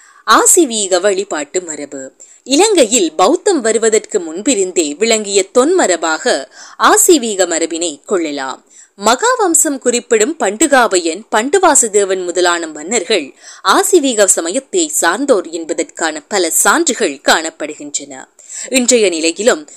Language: Tamil